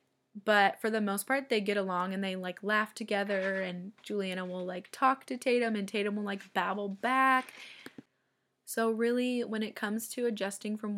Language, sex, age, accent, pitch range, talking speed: English, female, 20-39, American, 190-225 Hz, 185 wpm